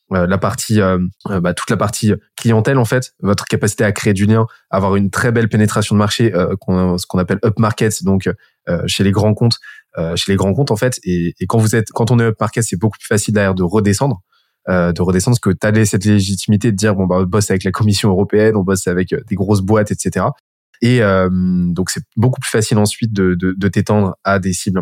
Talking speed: 240 wpm